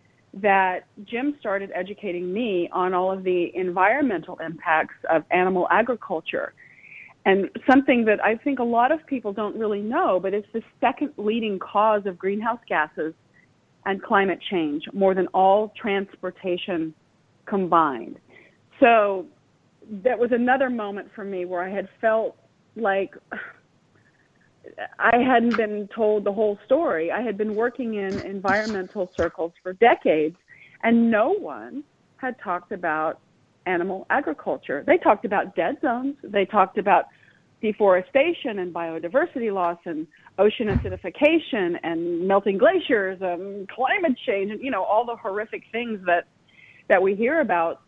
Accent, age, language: American, 40-59, English